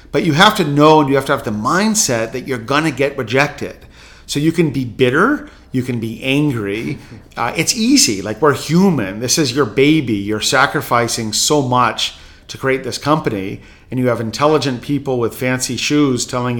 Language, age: English, 50-69